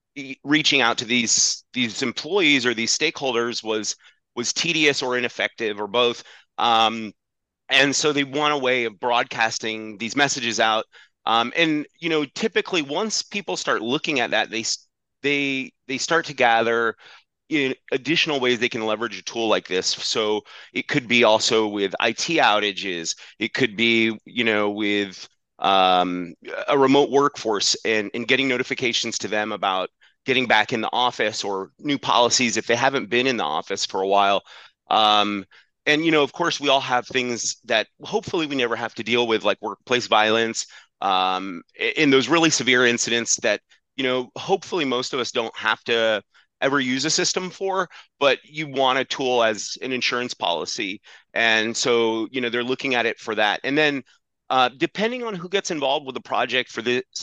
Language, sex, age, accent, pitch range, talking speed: English, male, 30-49, American, 110-140 Hz, 180 wpm